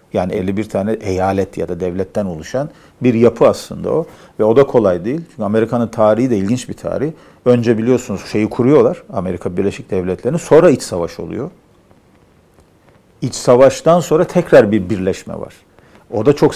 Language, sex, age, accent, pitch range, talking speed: Turkish, male, 50-69, native, 100-125 Hz, 165 wpm